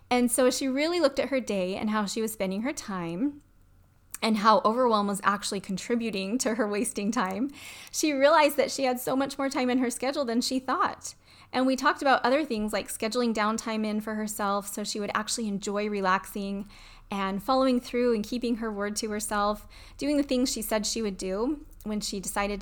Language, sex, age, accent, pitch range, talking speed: English, female, 20-39, American, 200-250 Hz, 210 wpm